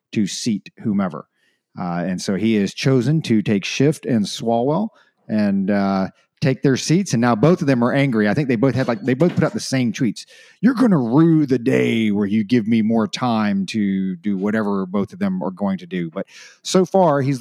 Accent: American